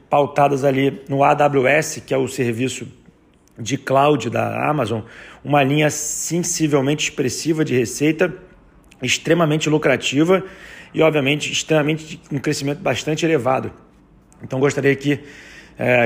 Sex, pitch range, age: male, 125-145 Hz, 40-59